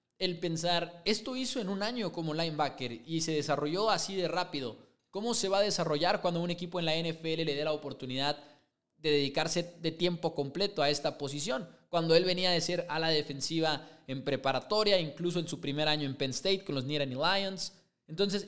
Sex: male